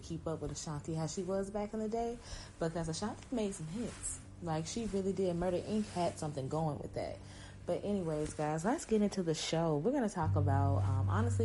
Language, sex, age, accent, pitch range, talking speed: English, female, 30-49, American, 130-165 Hz, 220 wpm